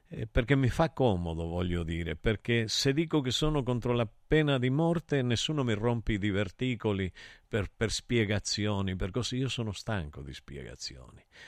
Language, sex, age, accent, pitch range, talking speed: Italian, male, 50-69, native, 105-170 Hz, 160 wpm